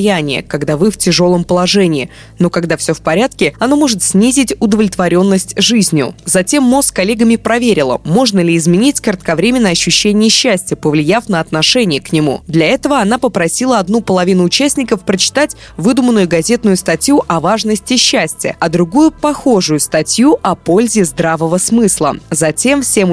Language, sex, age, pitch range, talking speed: Russian, female, 20-39, 175-235 Hz, 145 wpm